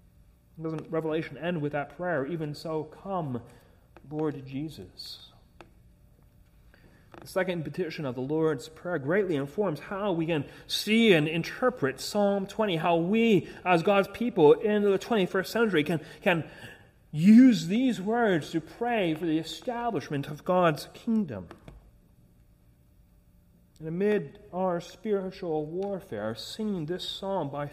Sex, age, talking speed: male, 30-49, 130 wpm